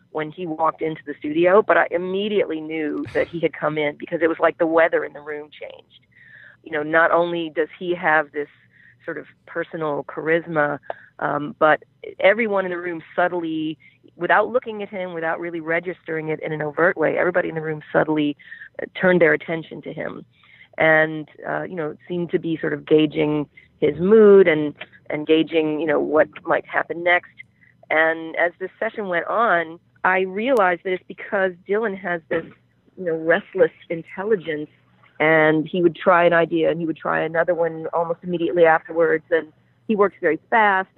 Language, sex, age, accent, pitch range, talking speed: English, female, 40-59, American, 155-190 Hz, 185 wpm